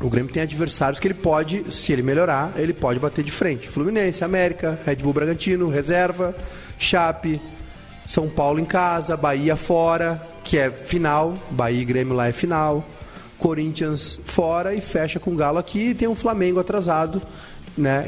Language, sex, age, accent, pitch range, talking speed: Portuguese, male, 30-49, Brazilian, 135-180 Hz, 170 wpm